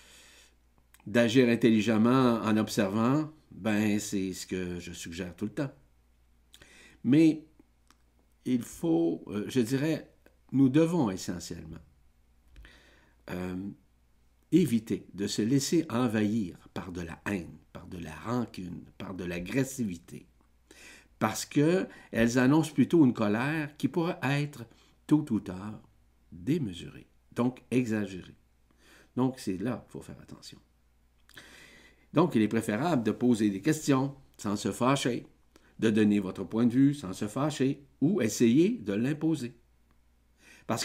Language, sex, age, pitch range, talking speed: French, male, 60-79, 85-125 Hz, 125 wpm